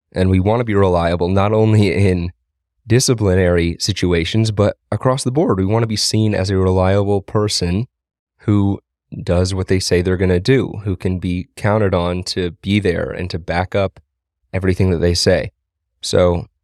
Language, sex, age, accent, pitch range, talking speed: English, male, 30-49, American, 90-105 Hz, 180 wpm